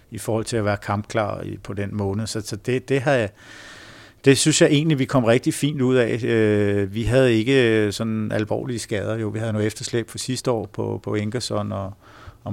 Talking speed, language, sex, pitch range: 200 wpm, Danish, male, 100-115 Hz